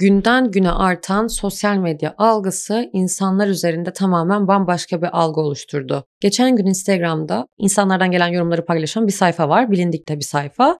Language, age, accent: Turkish, 30-49, native